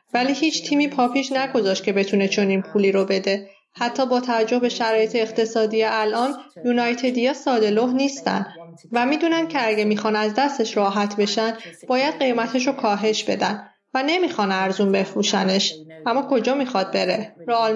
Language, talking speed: Persian, 150 wpm